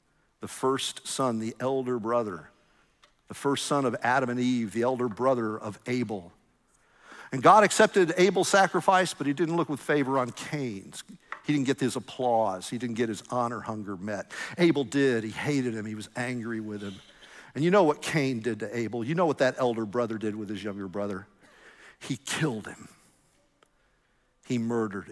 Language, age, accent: English, 50-69, American